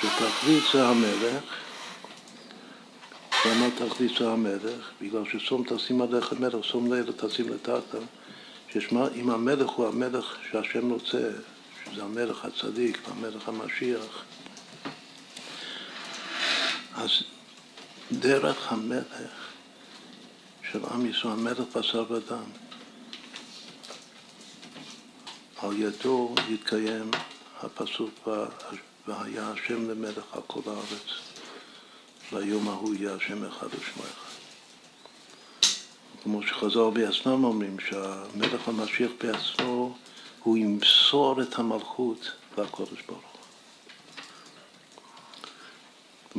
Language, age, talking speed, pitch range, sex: Hebrew, 60-79, 85 wpm, 110-130 Hz, male